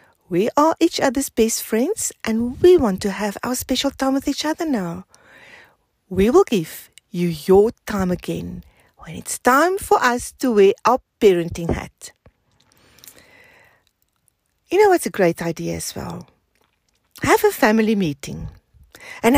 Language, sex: English, female